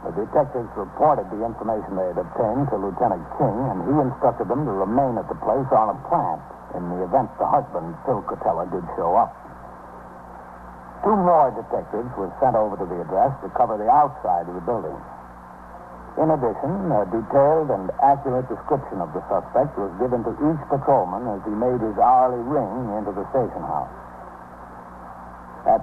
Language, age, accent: English, 60-79, American